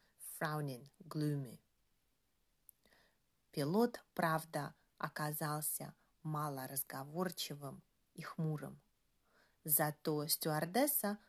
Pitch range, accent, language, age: 150-200 Hz, native, Russian, 30-49